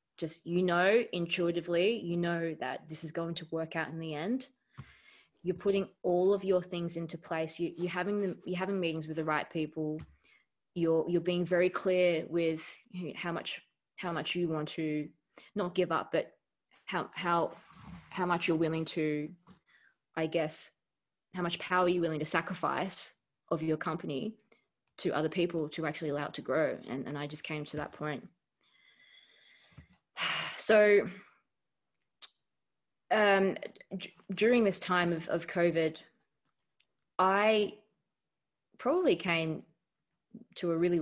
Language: English